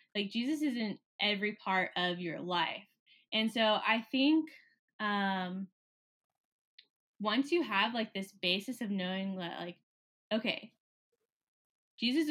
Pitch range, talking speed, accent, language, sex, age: 200-235 Hz, 125 wpm, American, English, female, 10-29